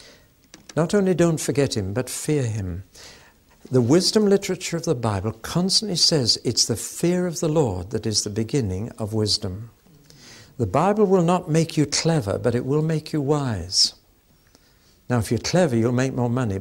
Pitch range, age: 105-140 Hz, 60-79